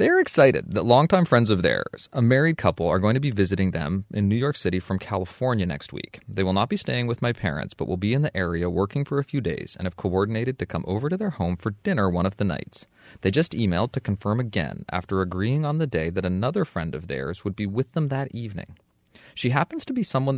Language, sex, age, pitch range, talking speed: English, male, 30-49, 95-130 Hz, 250 wpm